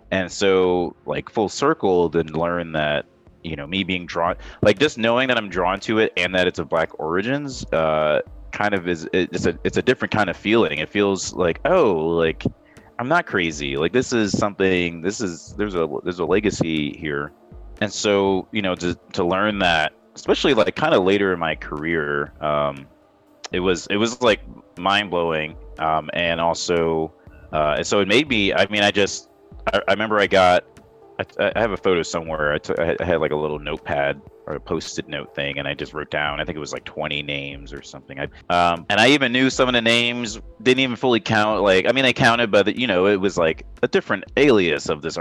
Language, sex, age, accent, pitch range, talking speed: English, male, 30-49, American, 80-105 Hz, 210 wpm